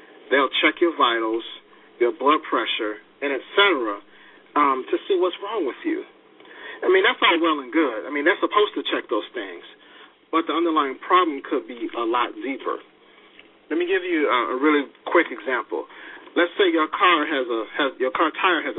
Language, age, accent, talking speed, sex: English, 40-59, American, 190 wpm, male